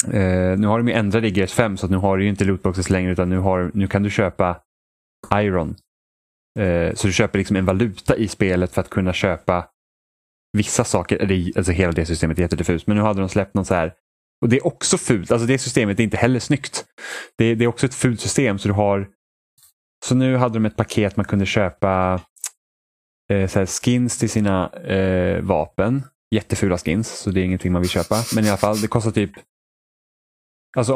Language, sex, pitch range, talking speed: Swedish, male, 95-125 Hz, 215 wpm